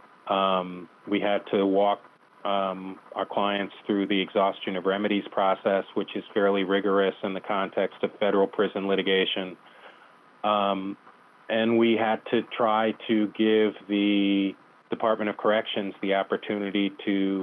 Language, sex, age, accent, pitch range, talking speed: English, male, 40-59, American, 95-105 Hz, 140 wpm